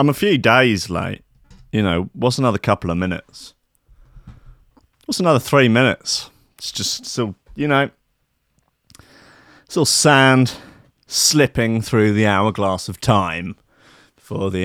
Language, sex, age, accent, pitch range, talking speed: English, male, 30-49, British, 105-150 Hz, 130 wpm